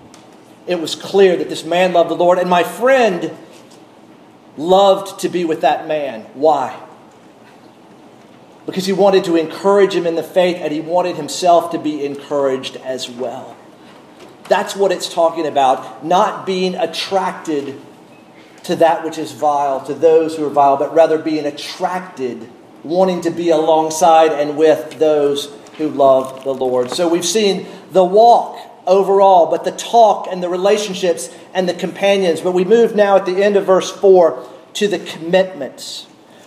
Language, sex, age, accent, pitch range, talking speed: English, male, 40-59, American, 160-205 Hz, 160 wpm